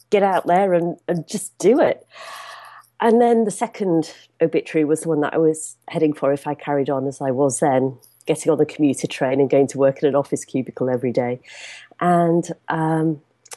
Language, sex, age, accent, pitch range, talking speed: English, female, 40-59, British, 145-175 Hz, 205 wpm